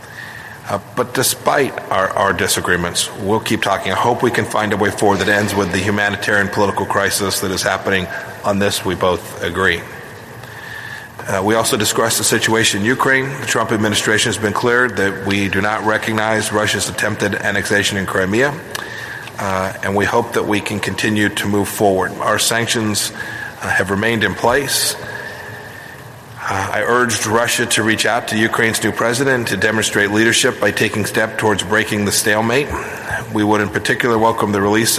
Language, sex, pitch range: English, male, 100-110 Hz